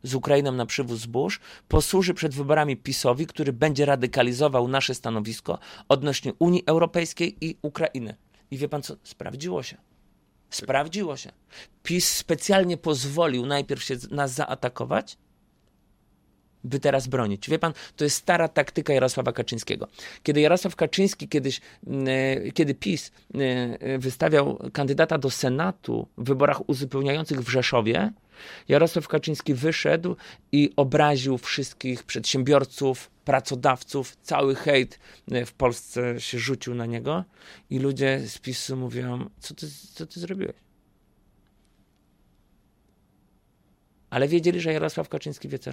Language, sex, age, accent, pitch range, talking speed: Polish, male, 30-49, native, 125-150 Hz, 120 wpm